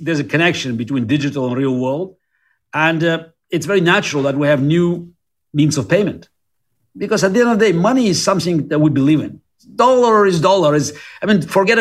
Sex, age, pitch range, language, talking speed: male, 50-69, 140-190 Hz, English, 210 wpm